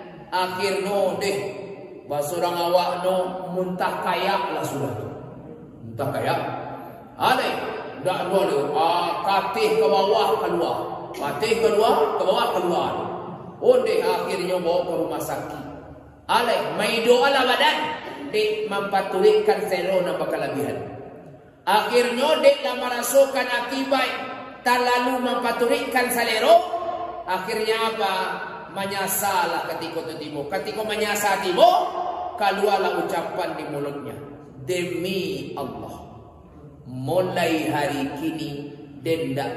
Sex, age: male, 30-49